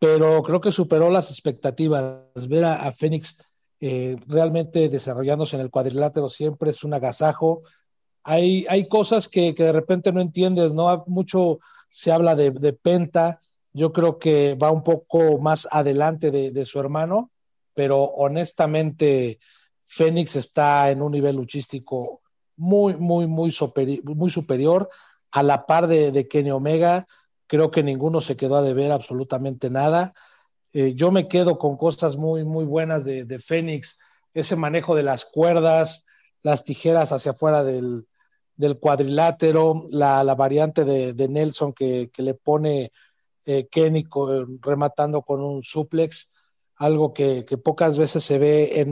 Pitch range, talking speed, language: 140-160 Hz, 155 wpm, Spanish